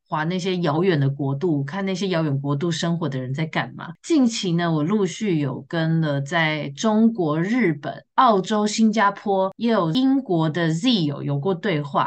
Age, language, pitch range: 20-39, Chinese, 160-225 Hz